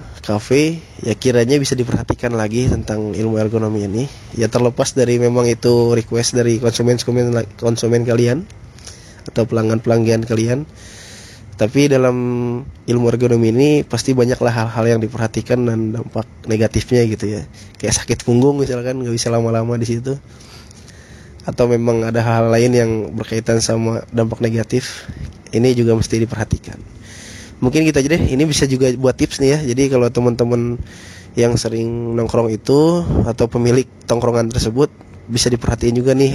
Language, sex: Indonesian, male